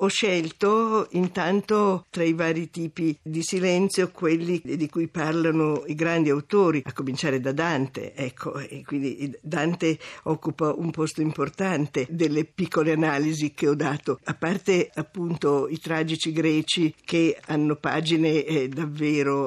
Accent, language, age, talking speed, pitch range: native, Italian, 50-69, 140 wpm, 150-180 Hz